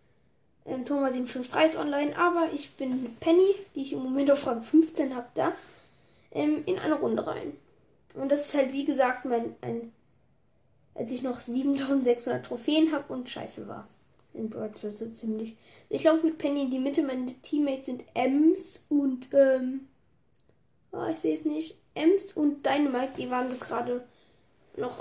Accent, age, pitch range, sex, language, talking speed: German, 10-29, 230-285 Hz, female, German, 160 wpm